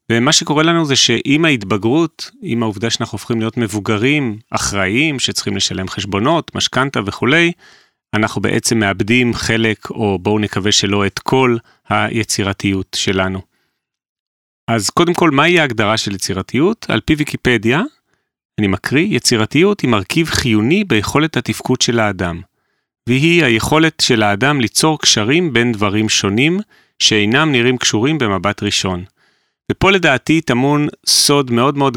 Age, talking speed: 30-49, 130 wpm